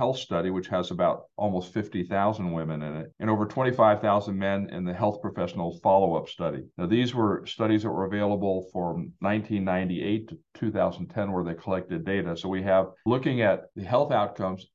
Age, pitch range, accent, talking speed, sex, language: 50-69, 95-115 Hz, American, 175 wpm, male, English